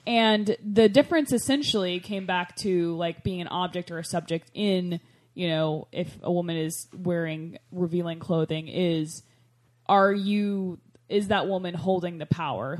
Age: 20-39